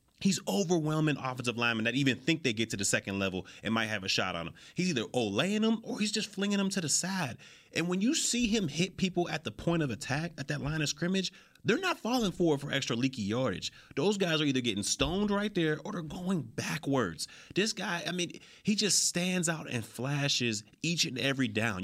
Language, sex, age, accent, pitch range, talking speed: English, male, 30-49, American, 120-170 Hz, 230 wpm